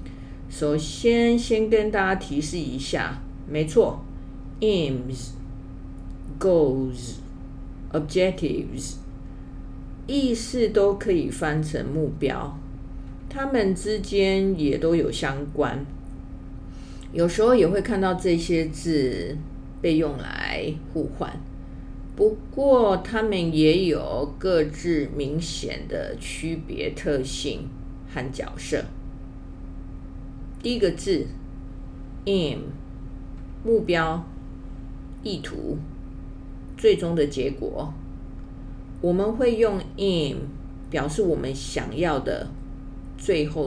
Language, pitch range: English, 140-195 Hz